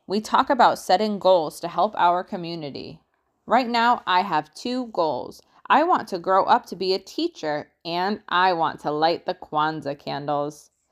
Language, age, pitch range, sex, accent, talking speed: English, 20-39, 165-220 Hz, female, American, 175 wpm